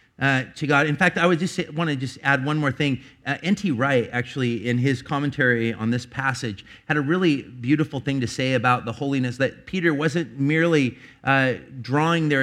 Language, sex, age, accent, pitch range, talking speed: English, male, 40-59, American, 115-155 Hz, 205 wpm